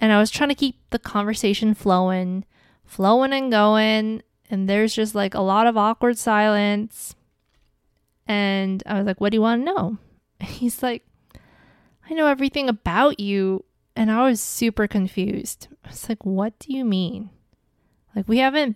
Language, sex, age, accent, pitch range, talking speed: English, female, 20-39, American, 185-220 Hz, 170 wpm